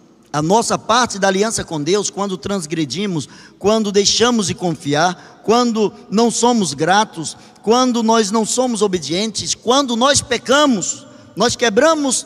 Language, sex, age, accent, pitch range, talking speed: Portuguese, male, 20-39, Brazilian, 165-255 Hz, 130 wpm